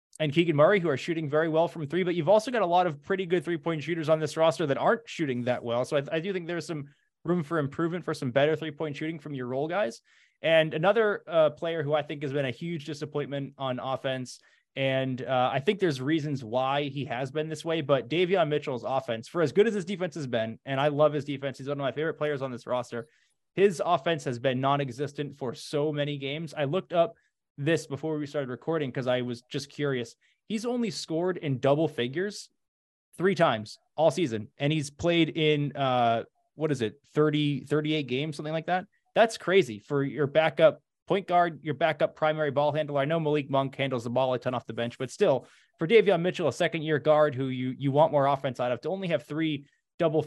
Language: English